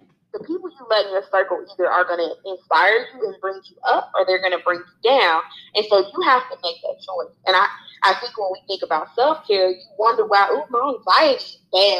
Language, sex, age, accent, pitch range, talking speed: English, female, 20-39, American, 185-260 Hz, 240 wpm